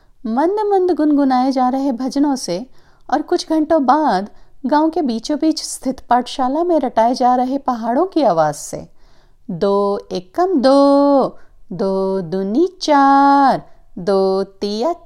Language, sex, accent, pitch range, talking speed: Hindi, female, native, 205-310 Hz, 130 wpm